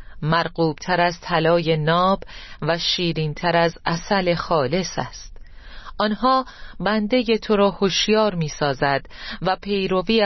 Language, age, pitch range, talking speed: Persian, 40-59, 150-205 Hz, 115 wpm